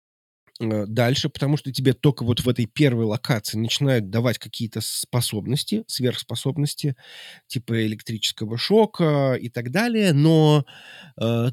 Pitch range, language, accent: 110-145 Hz, Russian, native